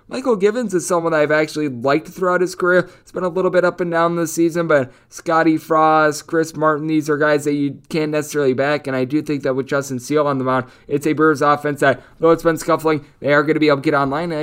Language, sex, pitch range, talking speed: English, male, 145-175 Hz, 265 wpm